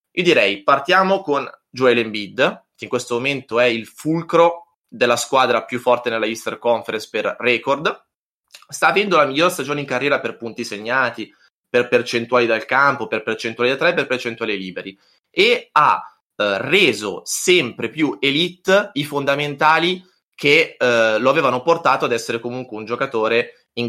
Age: 20-39